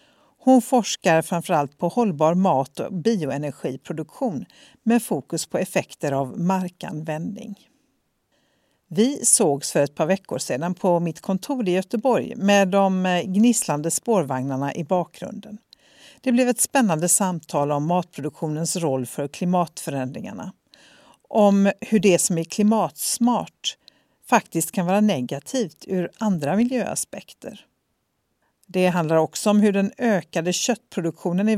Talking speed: 120 wpm